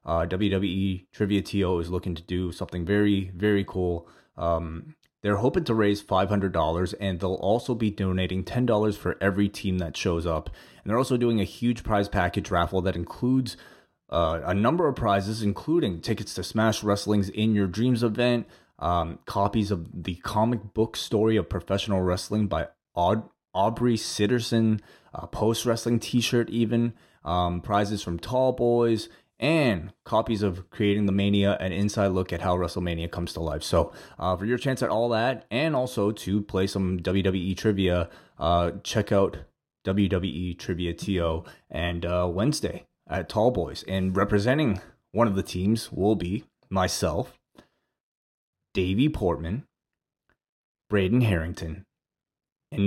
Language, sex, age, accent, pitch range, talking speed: English, male, 20-39, American, 90-110 Hz, 150 wpm